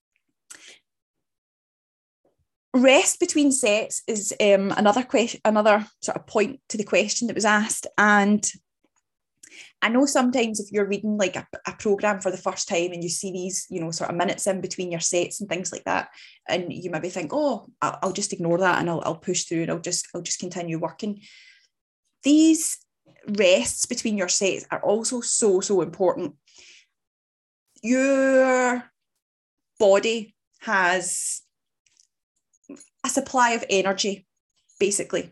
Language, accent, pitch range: English, British, 185-240 Hz